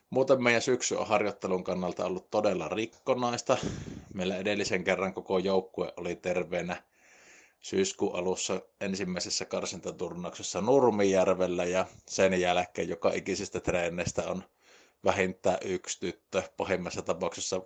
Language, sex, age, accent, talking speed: Finnish, male, 20-39, native, 110 wpm